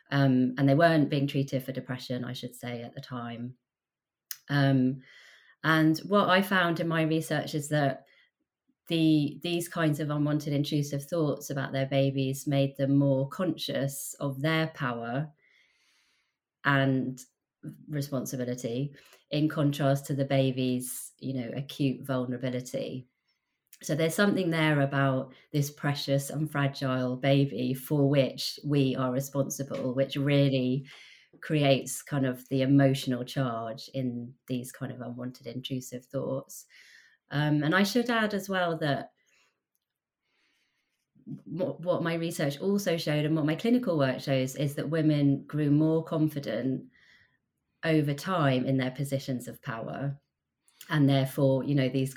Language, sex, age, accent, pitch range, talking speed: English, female, 30-49, British, 130-150 Hz, 140 wpm